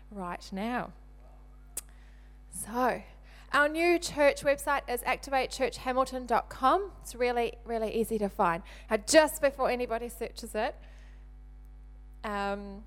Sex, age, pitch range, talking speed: female, 20-39, 185-250 Hz, 105 wpm